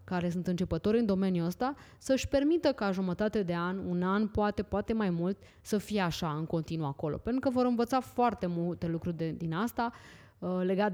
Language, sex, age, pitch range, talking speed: Romanian, female, 20-39, 170-225 Hz, 195 wpm